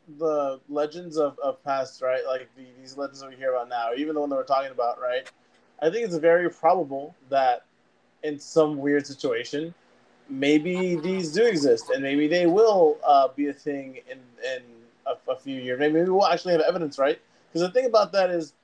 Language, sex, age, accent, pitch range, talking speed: English, male, 20-39, American, 140-170 Hz, 200 wpm